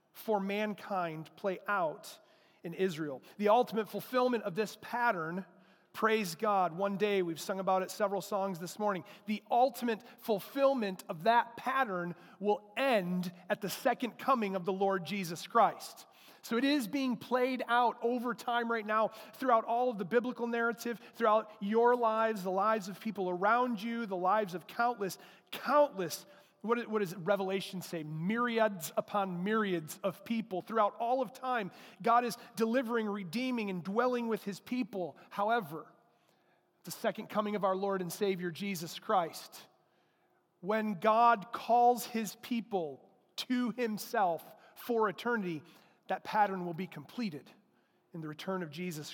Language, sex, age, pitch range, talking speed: English, male, 40-59, 190-235 Hz, 150 wpm